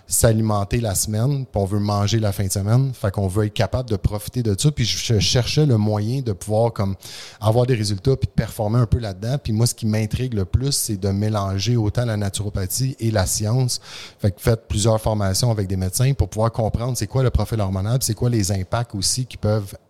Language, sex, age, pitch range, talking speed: French, male, 30-49, 100-115 Hz, 230 wpm